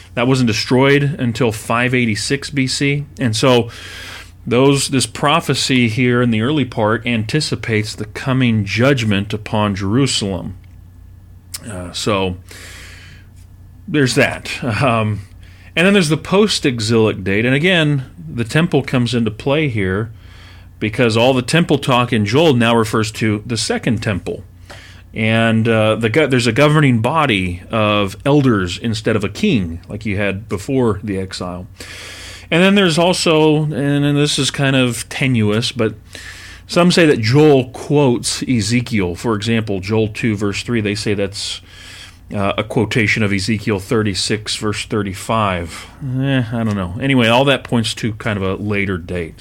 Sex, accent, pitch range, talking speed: male, American, 95-130 Hz, 145 wpm